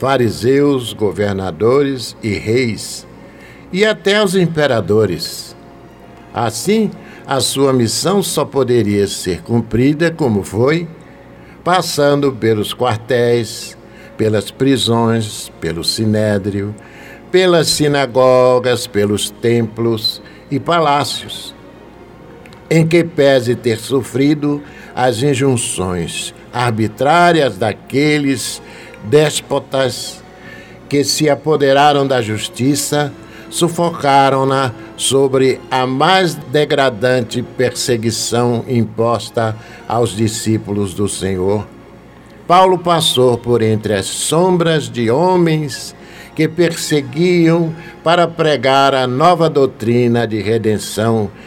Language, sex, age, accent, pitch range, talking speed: Portuguese, male, 60-79, Brazilian, 115-145 Hz, 85 wpm